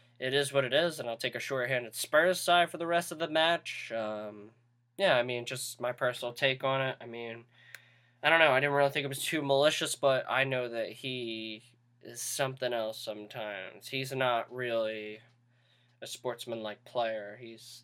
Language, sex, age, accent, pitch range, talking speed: English, male, 10-29, American, 120-140 Hz, 195 wpm